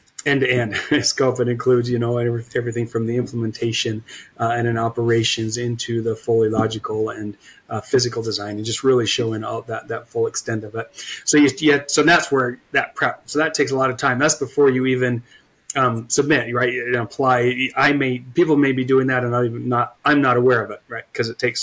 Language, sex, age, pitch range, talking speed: English, male, 30-49, 115-130 Hz, 225 wpm